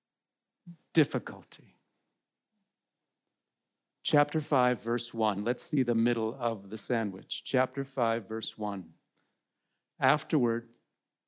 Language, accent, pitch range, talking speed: English, American, 155-225 Hz, 90 wpm